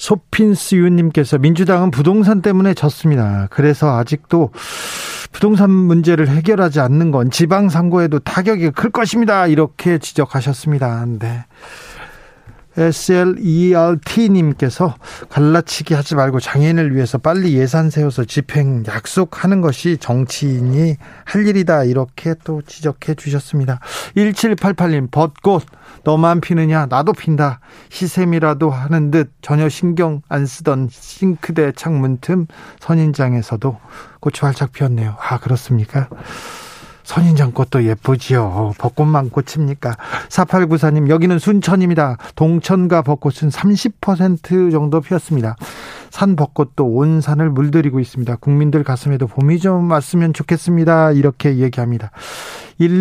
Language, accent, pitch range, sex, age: Korean, native, 135-175 Hz, male, 40-59